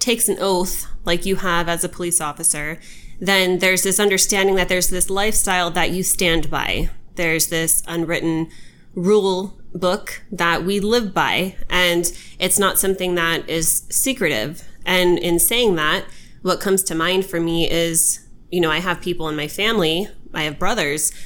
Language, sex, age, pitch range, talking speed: English, female, 20-39, 165-190 Hz, 170 wpm